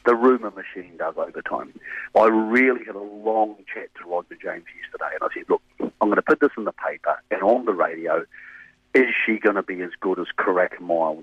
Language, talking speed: English, 225 wpm